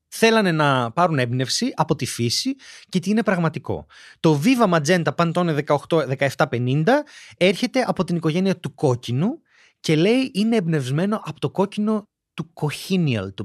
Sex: male